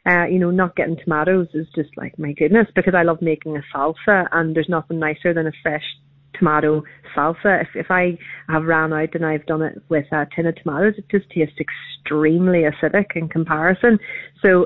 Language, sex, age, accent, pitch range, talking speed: English, female, 30-49, Irish, 155-185 Hz, 200 wpm